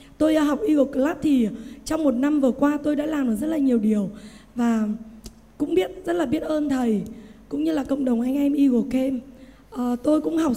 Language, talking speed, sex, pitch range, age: Vietnamese, 220 wpm, female, 250-300 Hz, 20-39